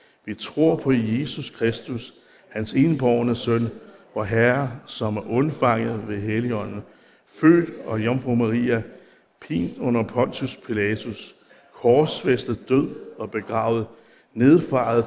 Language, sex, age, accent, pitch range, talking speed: Danish, male, 60-79, native, 110-130 Hz, 110 wpm